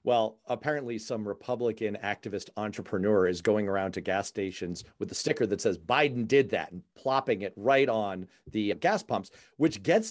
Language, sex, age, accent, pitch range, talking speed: English, male, 40-59, American, 95-140 Hz, 180 wpm